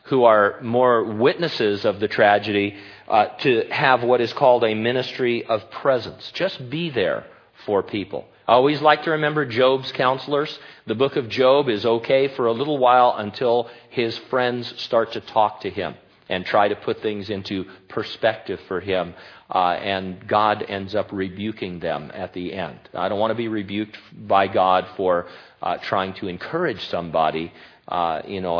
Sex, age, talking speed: male, 40-59, 175 wpm